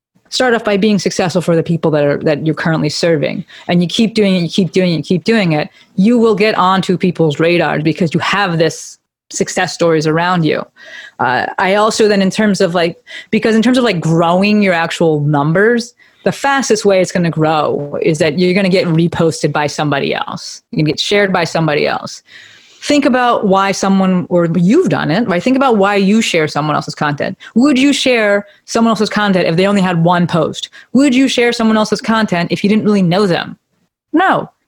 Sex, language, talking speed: female, English, 215 wpm